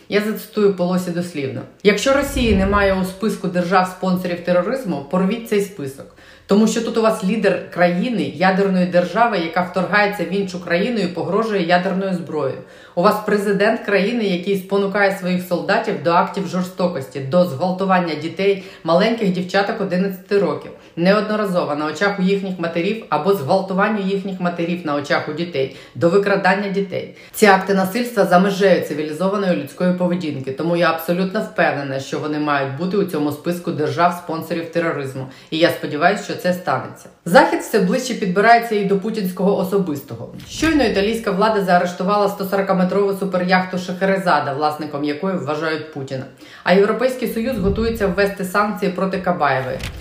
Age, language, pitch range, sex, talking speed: 30-49, Ukrainian, 170-200 Hz, female, 145 wpm